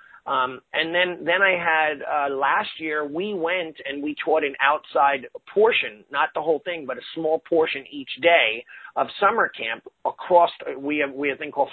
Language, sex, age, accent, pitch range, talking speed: English, male, 40-59, American, 140-170 Hz, 200 wpm